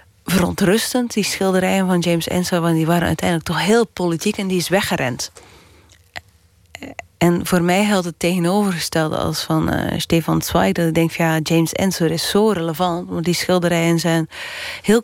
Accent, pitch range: Dutch, 165-195 Hz